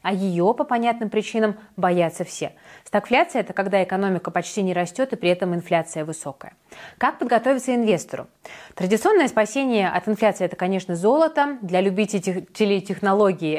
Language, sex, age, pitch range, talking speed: Russian, female, 20-39, 180-225 Hz, 145 wpm